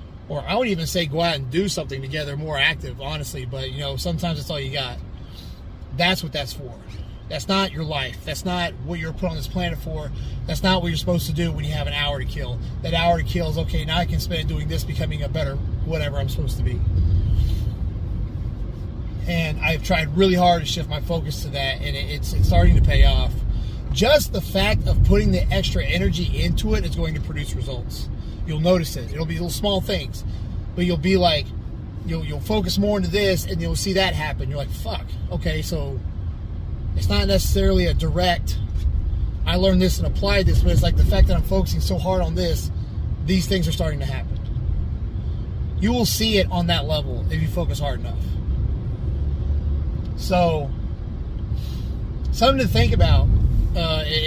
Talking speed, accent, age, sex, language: 200 wpm, American, 30-49, male, English